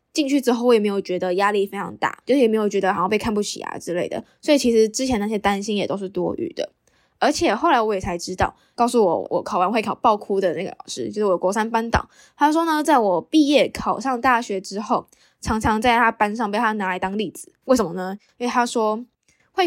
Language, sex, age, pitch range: Chinese, female, 10-29, 200-250 Hz